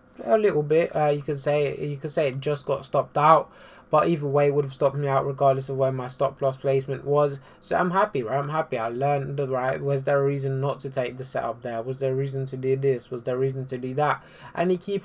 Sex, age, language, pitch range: male, 20-39, English, 130-145 Hz